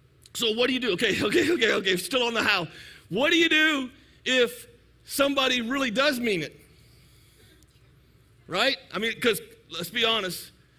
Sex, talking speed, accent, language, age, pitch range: male, 165 wpm, American, English, 50-69, 135-200 Hz